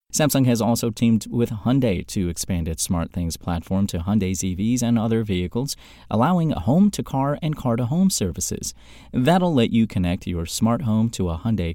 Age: 30-49